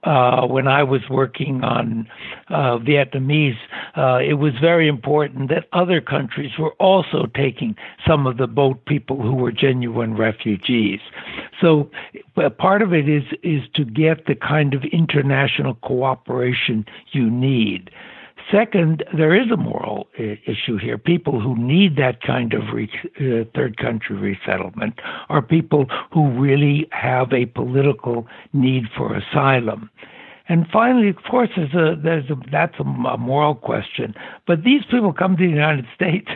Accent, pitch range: American, 130-160 Hz